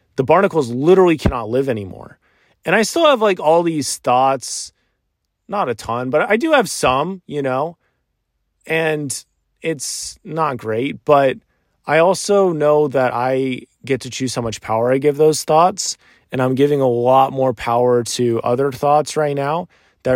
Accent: American